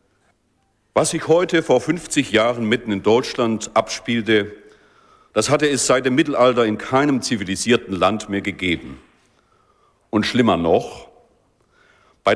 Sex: male